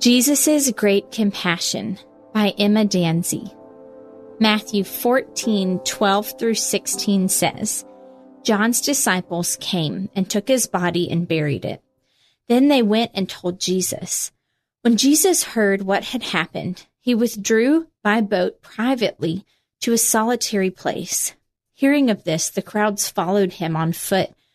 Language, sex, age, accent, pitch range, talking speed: English, female, 30-49, American, 185-240 Hz, 125 wpm